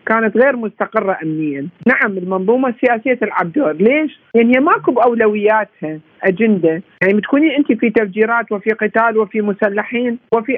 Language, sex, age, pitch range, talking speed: Arabic, male, 50-69, 195-240 Hz, 130 wpm